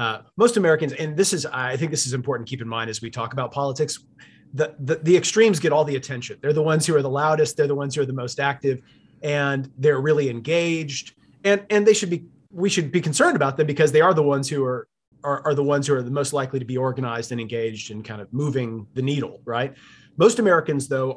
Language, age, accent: English, 30-49, American